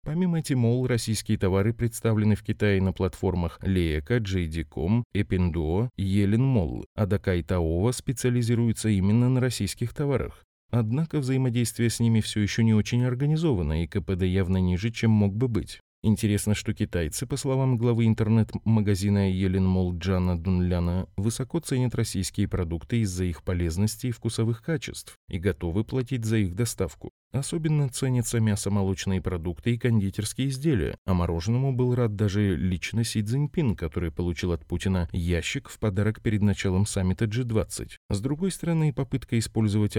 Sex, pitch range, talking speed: male, 90-120 Hz, 145 wpm